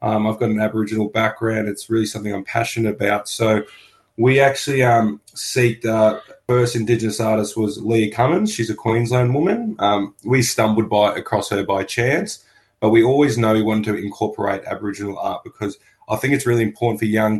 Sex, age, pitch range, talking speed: male, 20-39, 105-115 Hz, 190 wpm